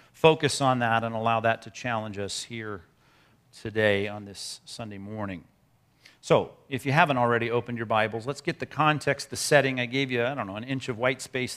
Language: English